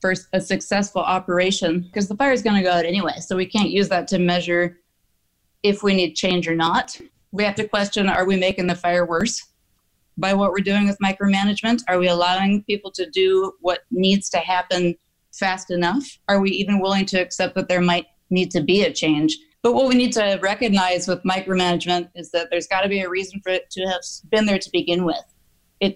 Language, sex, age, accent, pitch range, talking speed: English, female, 30-49, American, 180-205 Hz, 215 wpm